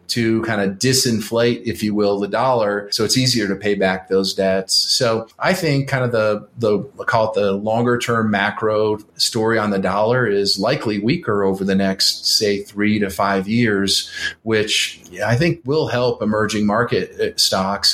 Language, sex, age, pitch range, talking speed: English, male, 40-59, 105-125 Hz, 180 wpm